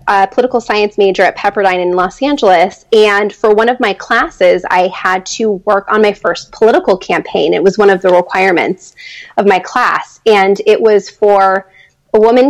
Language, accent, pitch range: English, American, 195-235 Hz